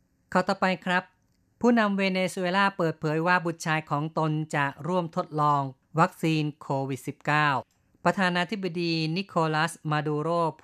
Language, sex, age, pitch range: Thai, female, 30-49, 135-160 Hz